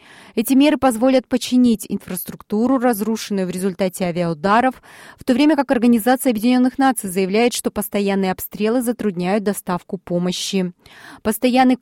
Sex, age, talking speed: female, 20-39, 120 wpm